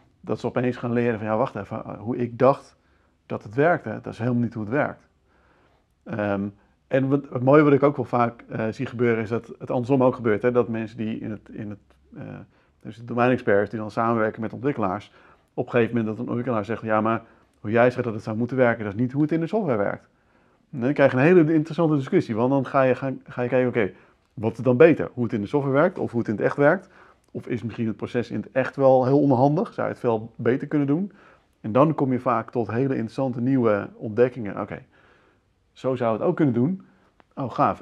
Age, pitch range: 40-59, 110-130 Hz